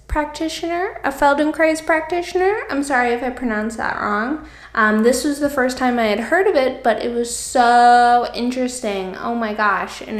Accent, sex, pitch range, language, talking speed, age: American, female, 200-255 Hz, English, 180 wpm, 10-29